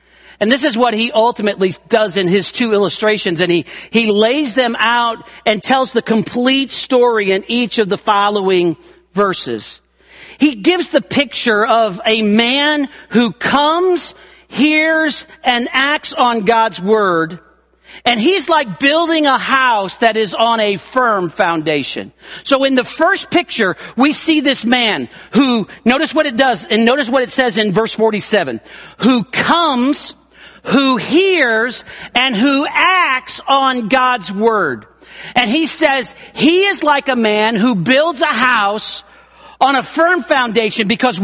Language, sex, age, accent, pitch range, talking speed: English, male, 40-59, American, 215-285 Hz, 150 wpm